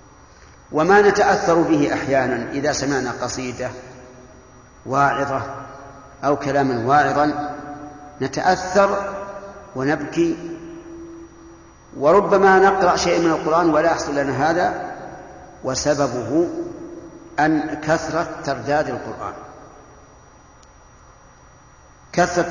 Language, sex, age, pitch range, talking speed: Arabic, male, 50-69, 140-170 Hz, 75 wpm